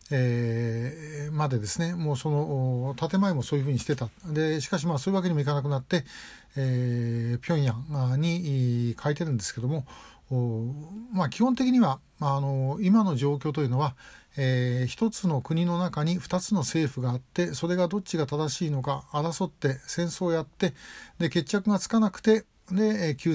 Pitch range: 130-180 Hz